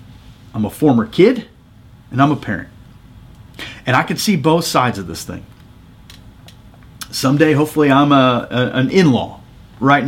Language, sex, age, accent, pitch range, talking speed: English, male, 40-59, American, 115-160 Hz, 150 wpm